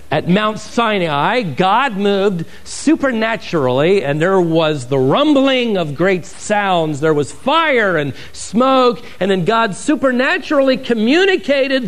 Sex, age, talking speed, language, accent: male, 50-69, 120 wpm, English, American